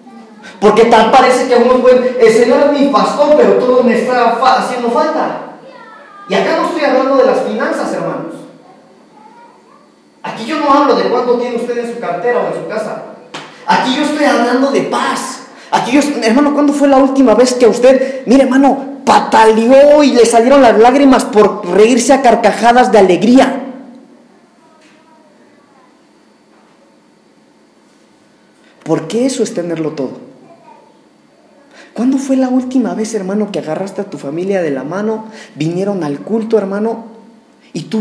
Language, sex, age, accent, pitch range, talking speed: Spanish, male, 30-49, Mexican, 180-265 Hz, 155 wpm